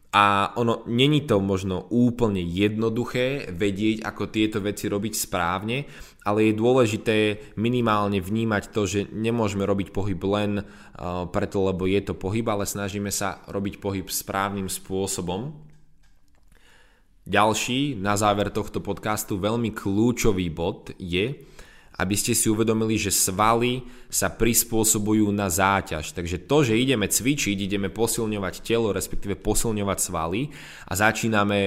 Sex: male